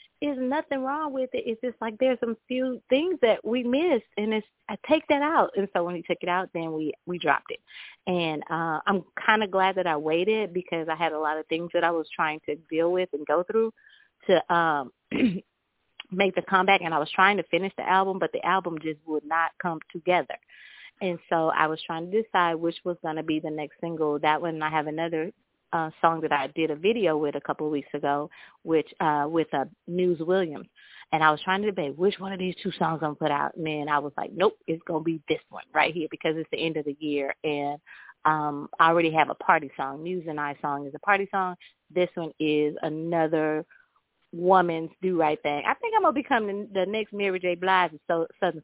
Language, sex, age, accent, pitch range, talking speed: English, female, 30-49, American, 155-205 Hz, 235 wpm